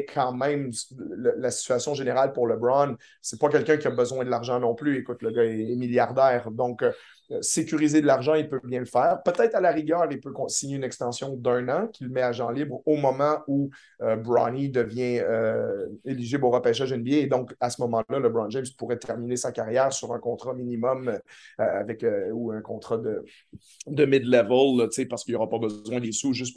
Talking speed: 205 wpm